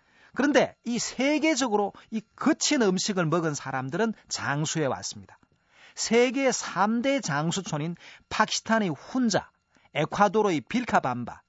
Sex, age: male, 40-59